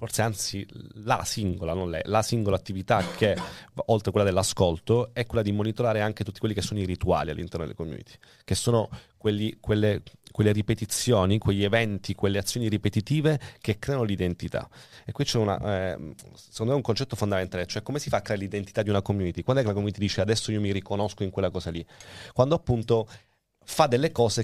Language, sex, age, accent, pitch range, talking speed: Italian, male, 30-49, native, 100-115 Hz, 200 wpm